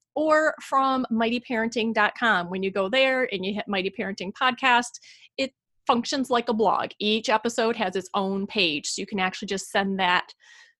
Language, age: English, 30-49